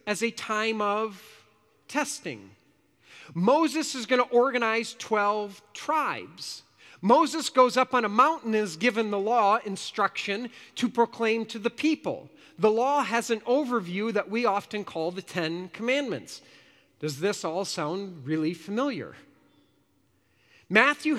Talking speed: 135 wpm